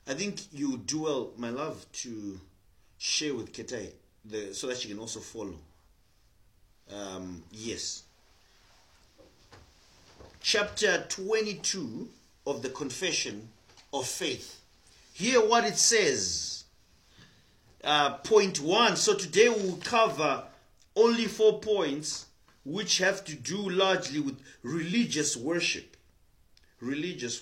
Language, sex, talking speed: English, male, 105 wpm